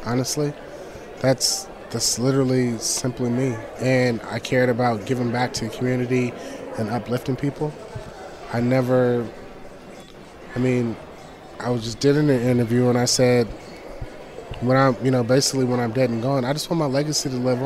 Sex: male